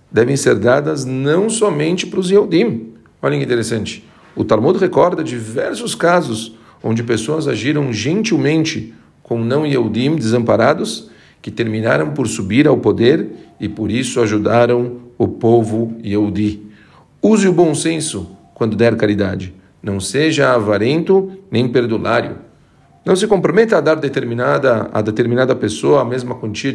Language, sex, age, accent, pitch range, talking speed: Portuguese, male, 50-69, Brazilian, 110-140 Hz, 135 wpm